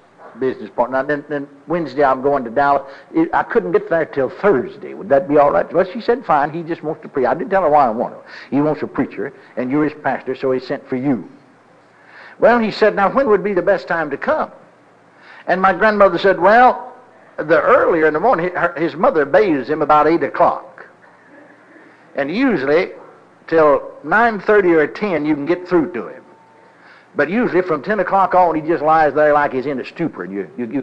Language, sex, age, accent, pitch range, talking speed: English, male, 60-79, American, 145-195 Hz, 215 wpm